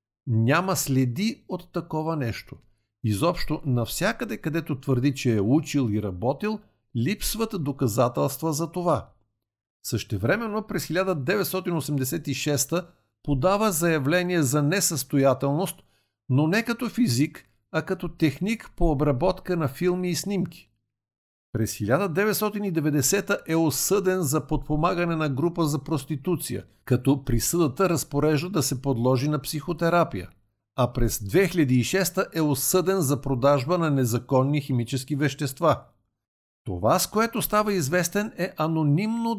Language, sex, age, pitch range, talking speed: Bulgarian, male, 50-69, 130-175 Hz, 115 wpm